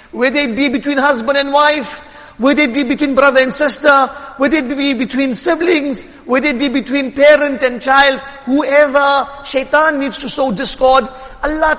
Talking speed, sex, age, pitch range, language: 170 wpm, male, 50-69, 265-295 Hz, English